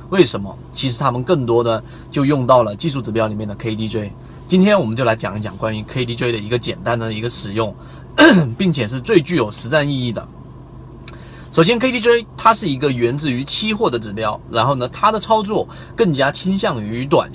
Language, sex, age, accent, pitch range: Chinese, male, 30-49, native, 120-185 Hz